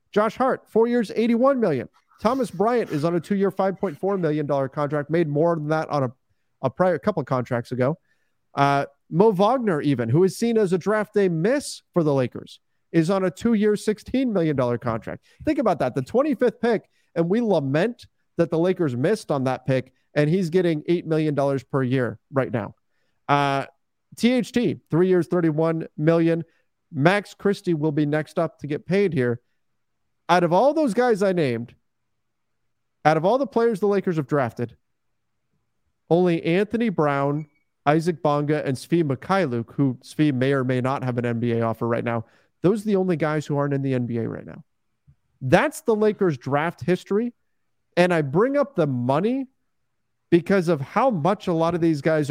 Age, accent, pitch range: 30-49, American, 140-200 Hz